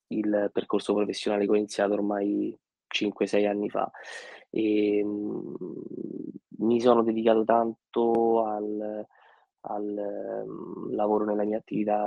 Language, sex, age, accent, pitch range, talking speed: Italian, male, 20-39, native, 105-115 Hz, 115 wpm